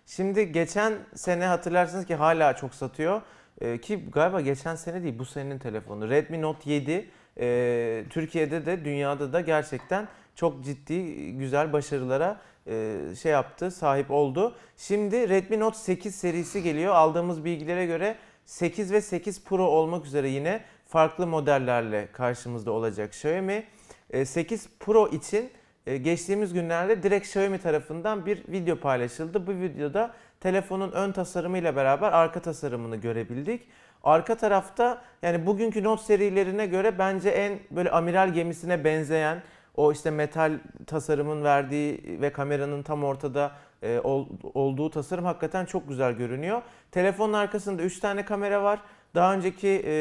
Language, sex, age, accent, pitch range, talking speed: Turkish, male, 40-59, native, 145-195 Hz, 135 wpm